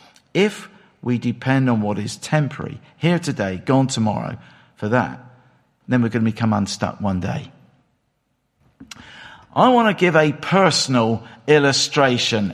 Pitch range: 140-210 Hz